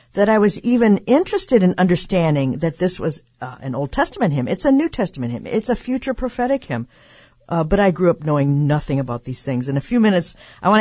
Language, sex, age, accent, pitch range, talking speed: English, female, 50-69, American, 135-195 Hz, 230 wpm